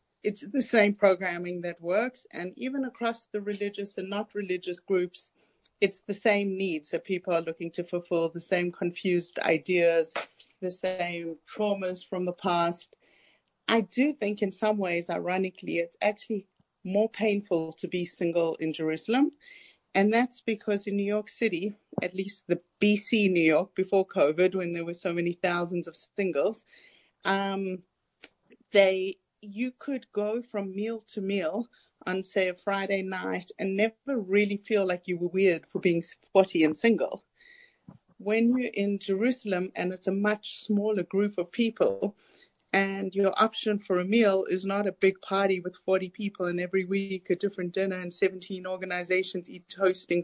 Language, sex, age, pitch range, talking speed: English, female, 40-59, 180-210 Hz, 165 wpm